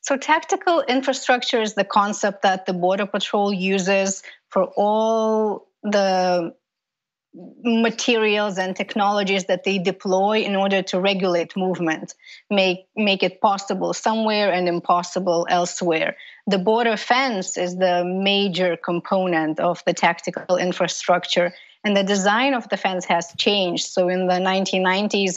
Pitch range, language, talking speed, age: 180-210 Hz, English, 130 wpm, 20-39